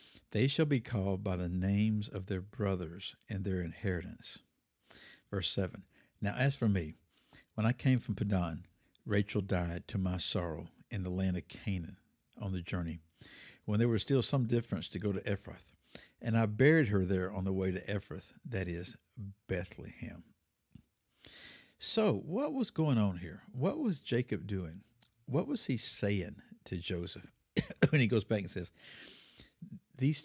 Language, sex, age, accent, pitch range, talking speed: English, male, 60-79, American, 95-120 Hz, 165 wpm